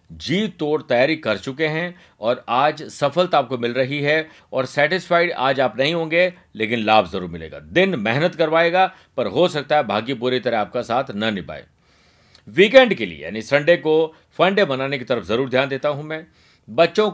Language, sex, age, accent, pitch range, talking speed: Hindi, male, 50-69, native, 130-165 Hz, 185 wpm